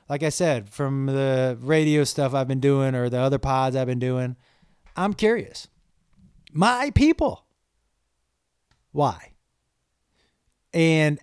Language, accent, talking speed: English, American, 125 wpm